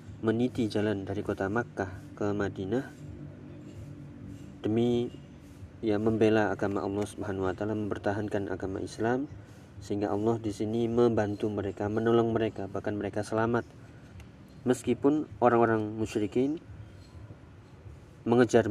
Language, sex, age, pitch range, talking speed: Indonesian, male, 30-49, 100-115 Hz, 100 wpm